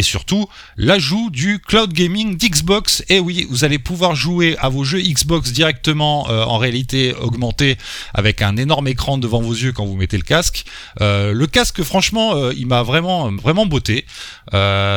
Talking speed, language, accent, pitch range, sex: 180 wpm, French, French, 100-150 Hz, male